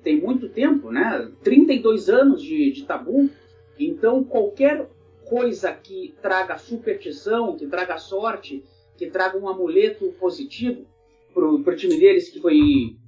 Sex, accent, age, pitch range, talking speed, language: male, Brazilian, 40-59, 185-290 Hz, 135 wpm, Portuguese